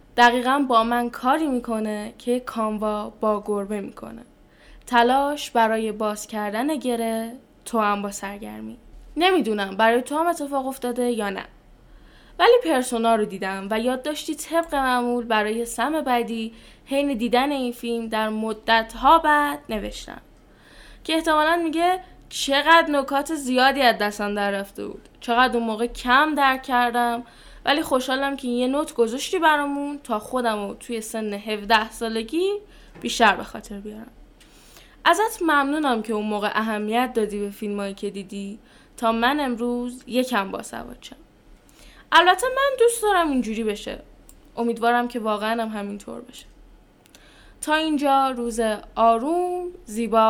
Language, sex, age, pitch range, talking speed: Persian, female, 10-29, 220-285 Hz, 135 wpm